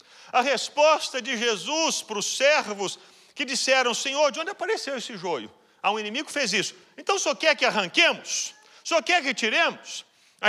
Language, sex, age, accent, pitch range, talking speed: Portuguese, male, 40-59, Brazilian, 215-300 Hz, 175 wpm